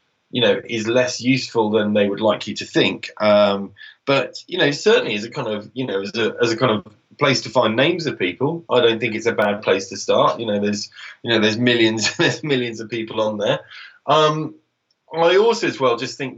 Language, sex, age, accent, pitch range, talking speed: English, male, 20-39, British, 110-145 Hz, 230 wpm